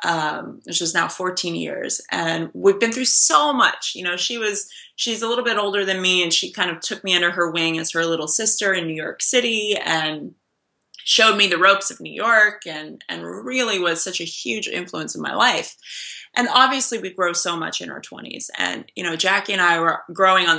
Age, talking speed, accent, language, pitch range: 20-39, 225 wpm, American, English, 170-220 Hz